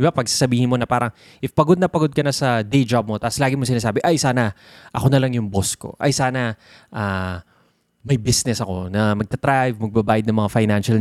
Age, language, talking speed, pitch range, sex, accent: 20-39, Filipino, 220 wpm, 110-145 Hz, male, native